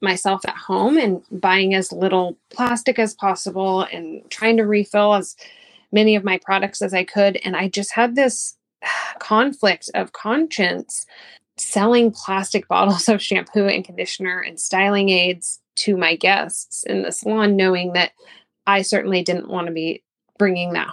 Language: English